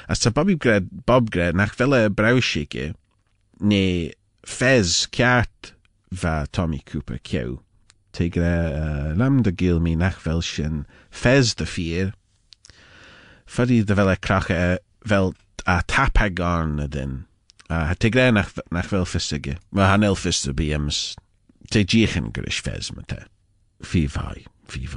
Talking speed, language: 145 wpm, English